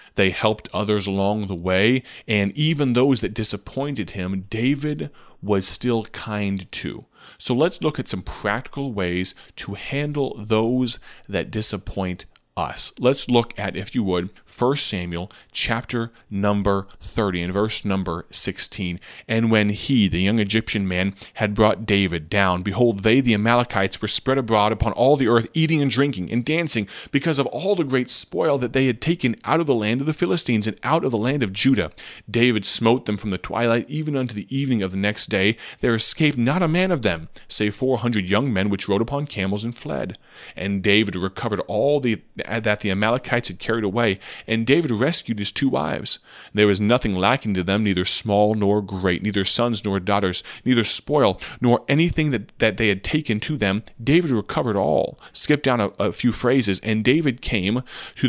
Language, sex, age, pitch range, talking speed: English, male, 30-49, 100-130 Hz, 190 wpm